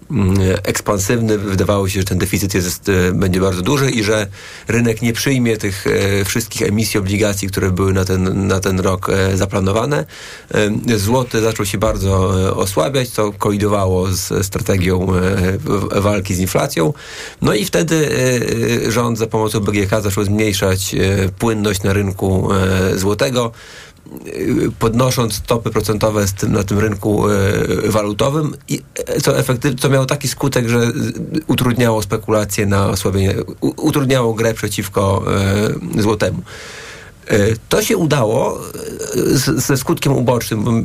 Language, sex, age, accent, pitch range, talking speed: Polish, male, 30-49, native, 95-120 Hz, 135 wpm